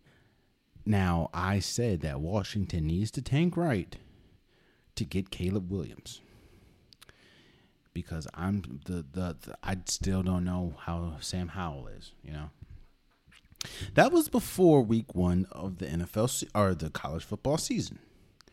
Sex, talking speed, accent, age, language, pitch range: male, 135 wpm, American, 30-49, English, 85-120 Hz